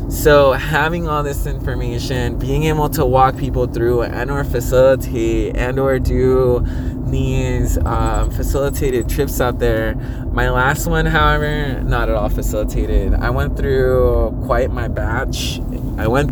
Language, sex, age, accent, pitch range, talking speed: English, male, 20-39, American, 95-130 Hz, 145 wpm